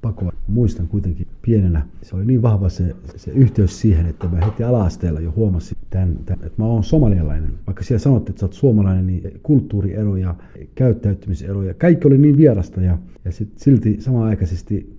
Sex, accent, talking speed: male, native, 170 wpm